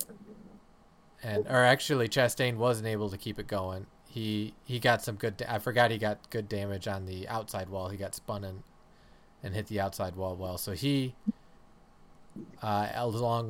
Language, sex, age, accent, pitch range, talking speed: English, male, 20-39, American, 100-125 Hz, 180 wpm